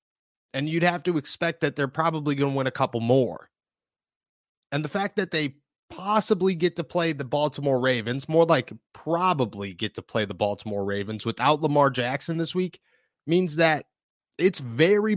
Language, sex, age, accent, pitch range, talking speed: English, male, 30-49, American, 135-190 Hz, 175 wpm